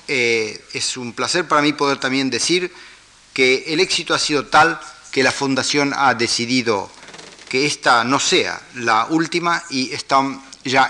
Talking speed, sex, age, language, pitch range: 160 wpm, male, 40-59, Spanish, 120-165 Hz